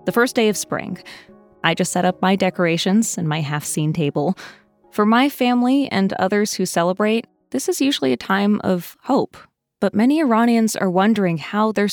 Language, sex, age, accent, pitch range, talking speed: English, female, 20-39, American, 165-215 Hz, 185 wpm